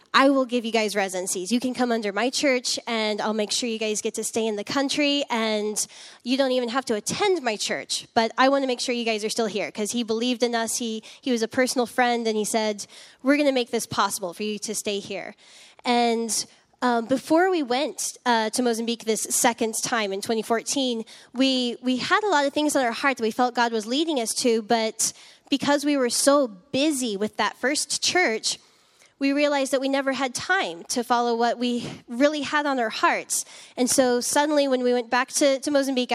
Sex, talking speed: female, 225 wpm